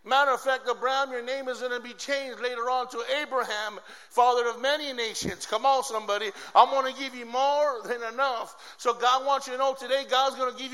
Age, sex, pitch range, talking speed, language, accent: 50-69, male, 220-265 Hz, 230 wpm, English, American